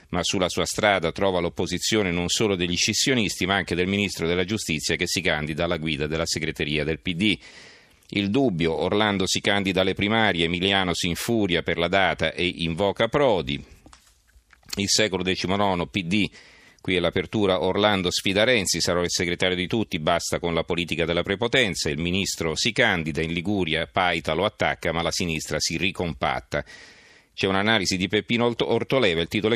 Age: 40-59